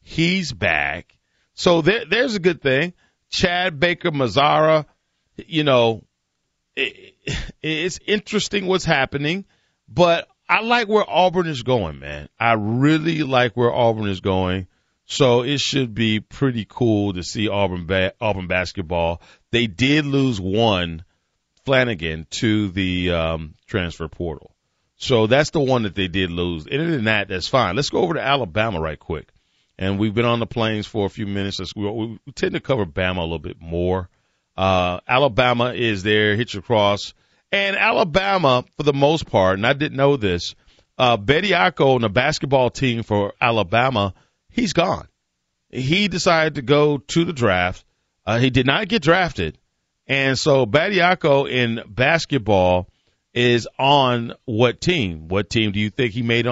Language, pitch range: English, 100-145 Hz